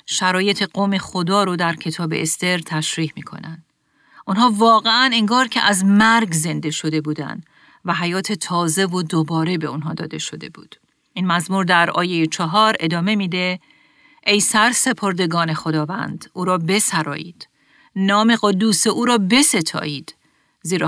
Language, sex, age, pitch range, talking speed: Persian, female, 40-59, 165-215 Hz, 145 wpm